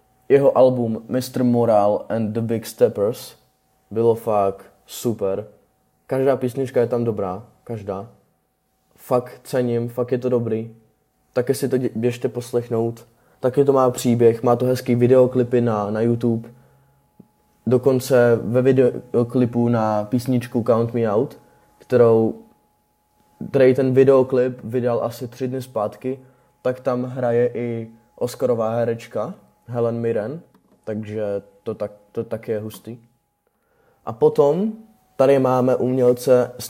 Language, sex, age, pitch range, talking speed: Czech, male, 20-39, 115-125 Hz, 125 wpm